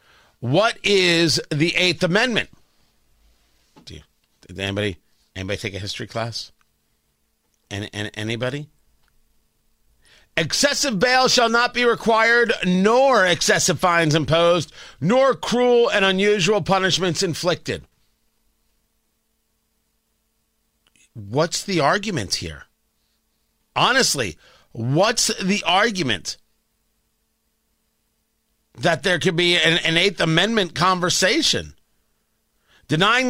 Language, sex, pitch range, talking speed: English, male, 140-195 Hz, 90 wpm